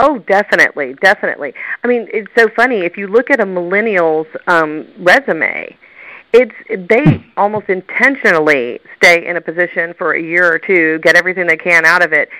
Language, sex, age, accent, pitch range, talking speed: English, female, 40-59, American, 175-230 Hz, 175 wpm